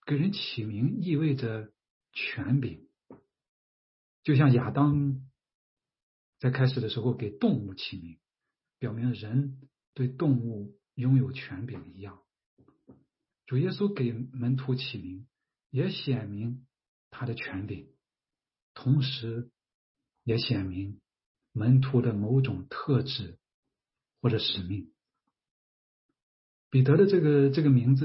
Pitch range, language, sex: 105-135 Hz, English, male